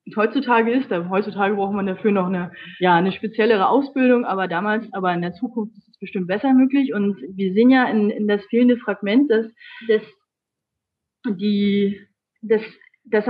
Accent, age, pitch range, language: German, 30-49, 200-260 Hz, German